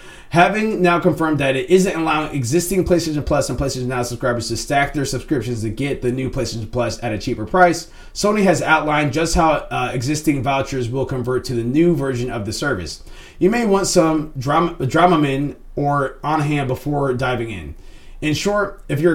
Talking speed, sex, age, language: 195 wpm, male, 30-49, English